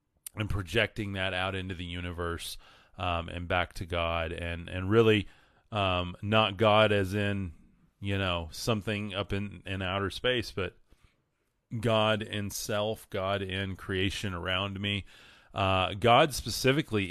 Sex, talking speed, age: male, 140 wpm, 30-49